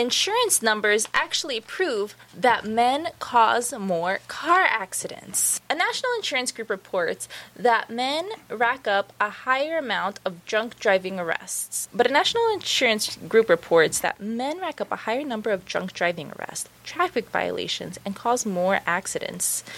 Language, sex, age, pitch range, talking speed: English, female, 20-39, 200-290 Hz, 150 wpm